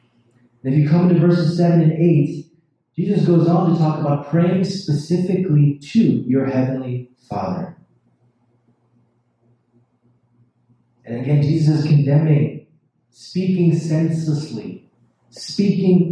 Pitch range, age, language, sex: 120-160 Hz, 30-49, English, male